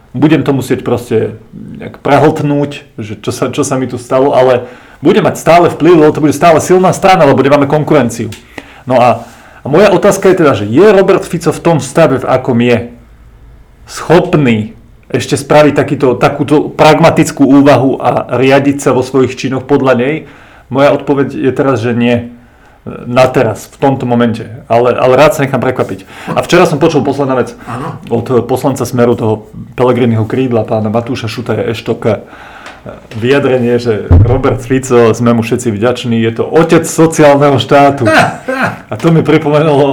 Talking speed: 160 wpm